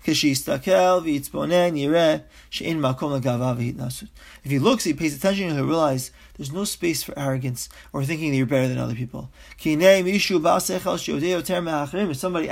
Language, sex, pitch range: English, male, 155-225 Hz